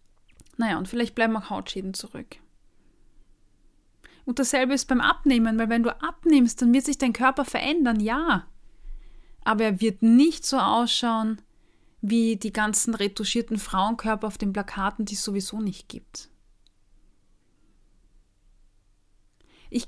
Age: 20-39